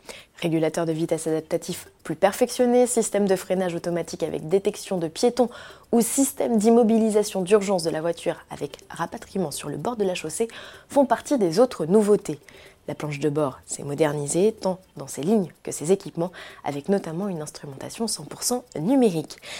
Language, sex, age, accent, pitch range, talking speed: French, female, 20-39, French, 165-240 Hz, 160 wpm